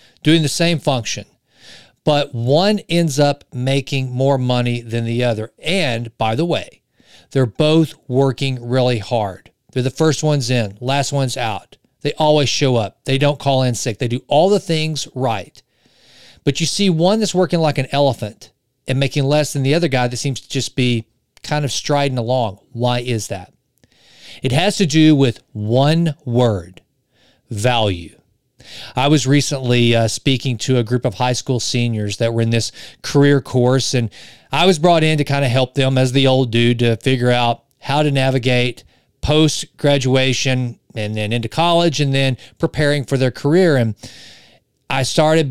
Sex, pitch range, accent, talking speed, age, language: male, 120-150 Hz, American, 175 wpm, 40-59, English